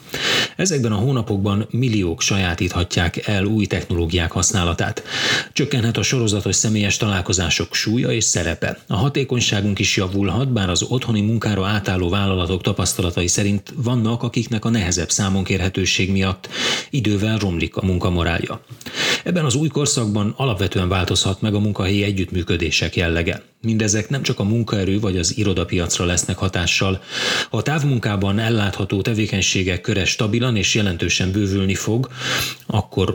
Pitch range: 95-115 Hz